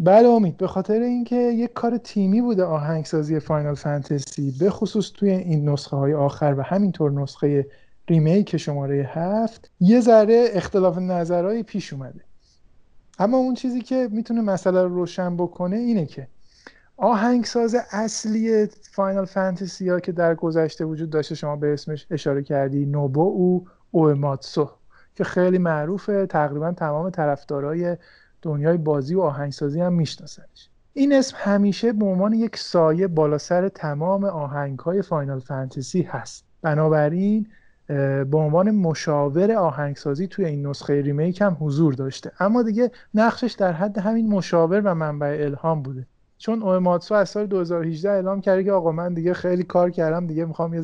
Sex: male